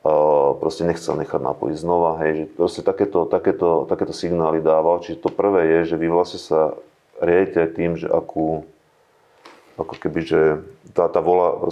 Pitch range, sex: 80-90 Hz, male